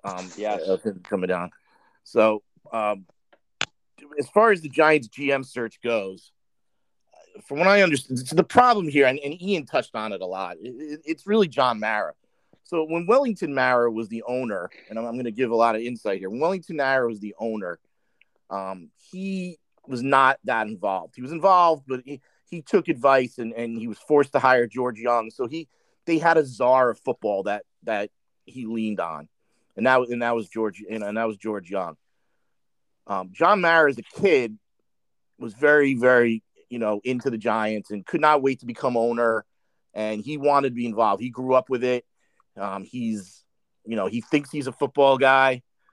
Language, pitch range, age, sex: English, 115-145 Hz, 40-59, male